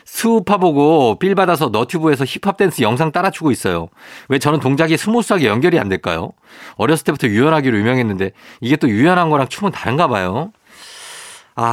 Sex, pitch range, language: male, 115-185 Hz, Korean